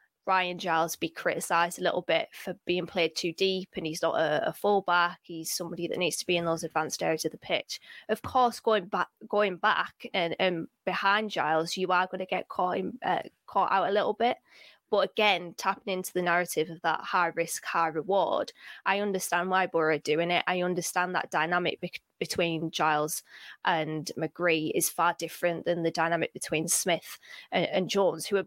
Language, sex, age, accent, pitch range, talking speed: English, female, 20-39, British, 165-190 Hz, 200 wpm